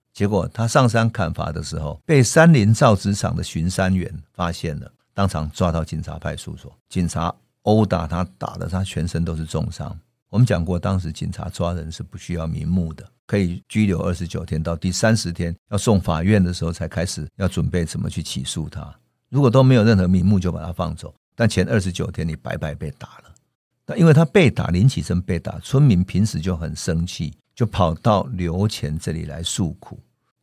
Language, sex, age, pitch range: Chinese, male, 50-69, 85-105 Hz